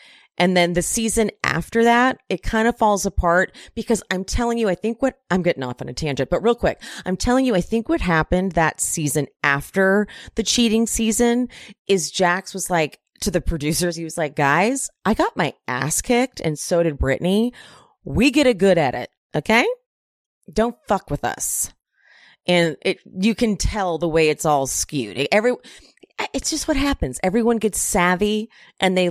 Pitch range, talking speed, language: 165-220 Hz, 190 wpm, English